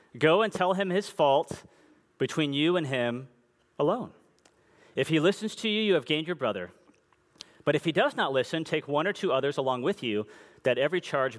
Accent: American